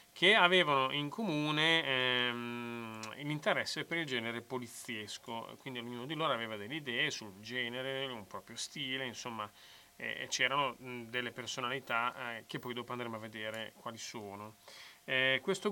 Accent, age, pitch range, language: native, 30-49, 110-140 Hz, Italian